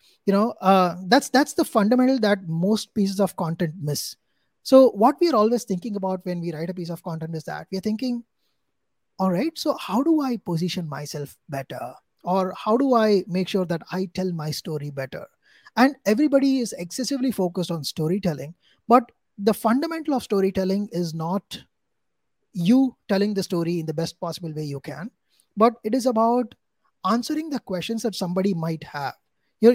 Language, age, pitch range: English, 20-39, 170-240 Hz